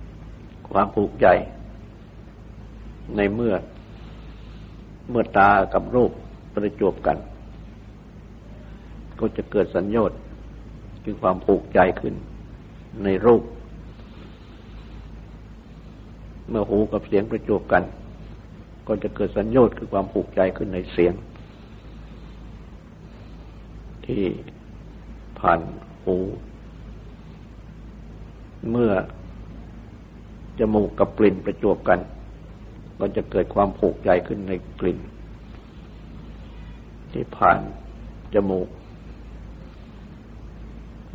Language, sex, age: Thai, male, 60-79